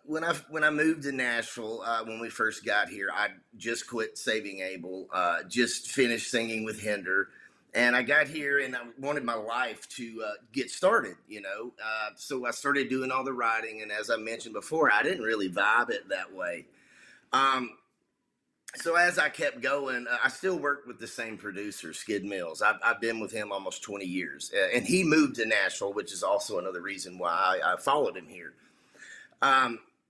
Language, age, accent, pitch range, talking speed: English, 30-49, American, 115-145 Hz, 200 wpm